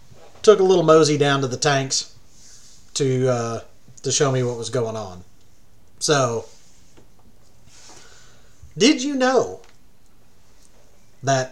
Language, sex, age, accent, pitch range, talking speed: English, male, 40-59, American, 120-165 Hz, 115 wpm